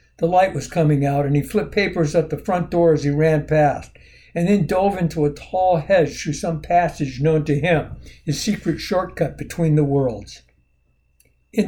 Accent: American